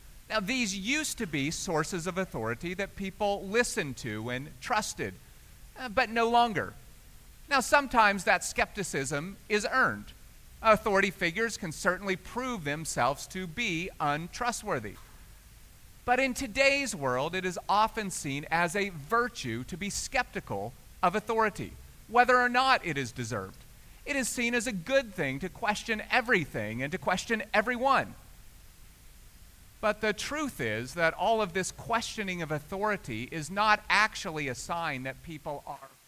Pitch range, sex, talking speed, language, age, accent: 145-220 Hz, male, 145 wpm, English, 40-59, American